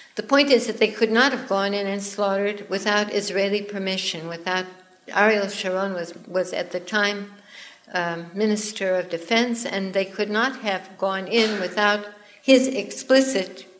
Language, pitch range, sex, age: English, 185-230 Hz, female, 60-79